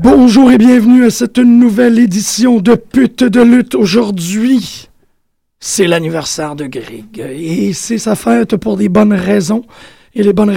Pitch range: 140-215 Hz